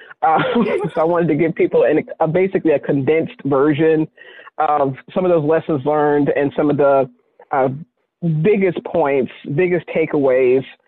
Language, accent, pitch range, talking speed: English, American, 130-155 Hz, 155 wpm